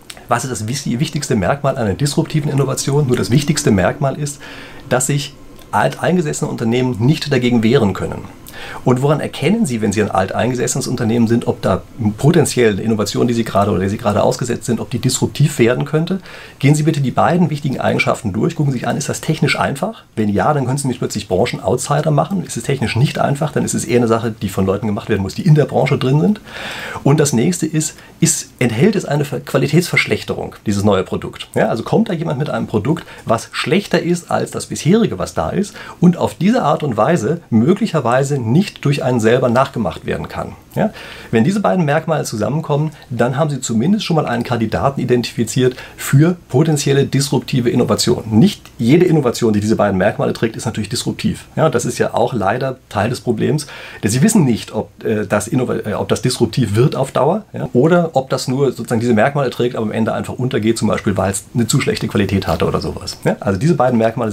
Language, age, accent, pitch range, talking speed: German, 40-59, German, 115-150 Hz, 210 wpm